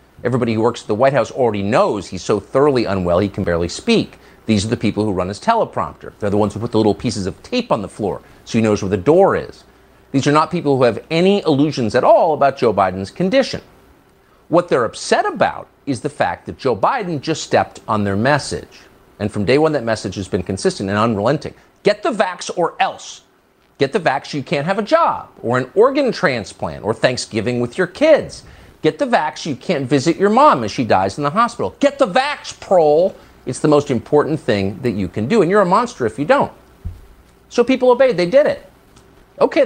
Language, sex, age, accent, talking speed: English, male, 50-69, American, 225 wpm